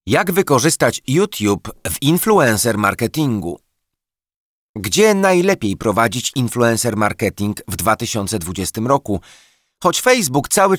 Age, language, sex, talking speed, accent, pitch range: 30-49, Polish, male, 95 wpm, native, 100-150 Hz